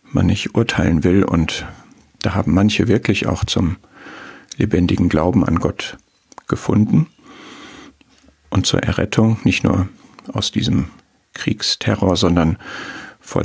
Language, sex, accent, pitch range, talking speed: German, male, German, 90-115 Hz, 115 wpm